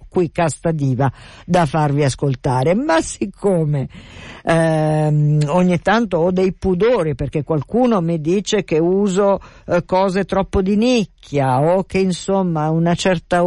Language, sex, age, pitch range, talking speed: Italian, female, 50-69, 145-190 Hz, 140 wpm